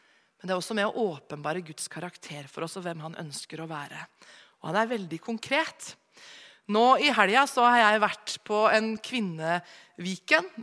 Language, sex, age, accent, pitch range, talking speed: English, female, 30-49, Swedish, 175-235 Hz, 180 wpm